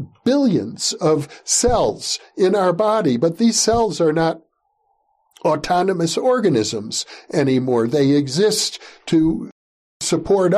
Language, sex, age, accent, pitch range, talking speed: English, male, 60-79, American, 155-215 Hz, 100 wpm